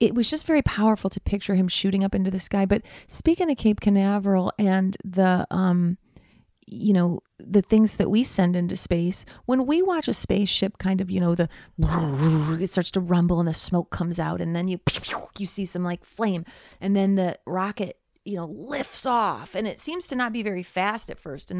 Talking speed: 210 wpm